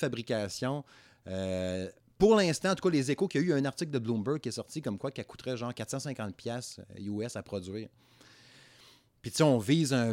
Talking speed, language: 205 wpm, French